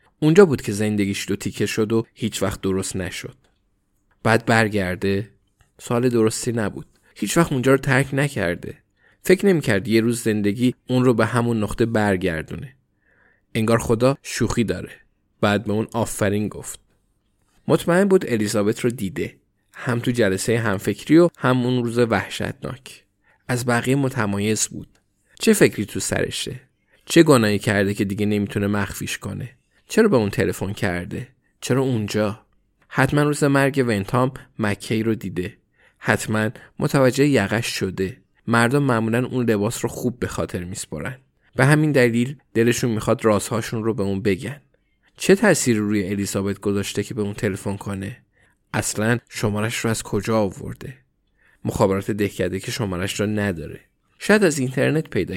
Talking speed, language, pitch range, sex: 150 wpm, Persian, 100-125 Hz, male